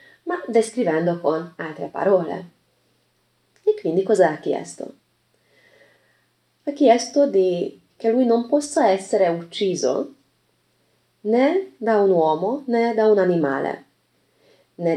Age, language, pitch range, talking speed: 30-49, Italian, 160-225 Hz, 110 wpm